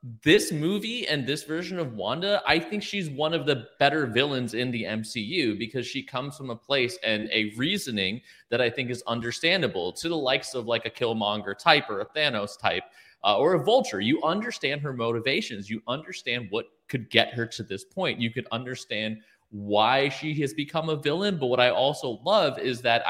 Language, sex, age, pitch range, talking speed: English, male, 30-49, 115-150 Hz, 200 wpm